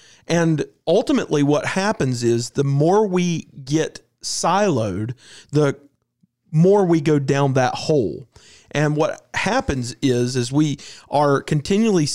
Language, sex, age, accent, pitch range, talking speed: English, male, 40-59, American, 140-175 Hz, 125 wpm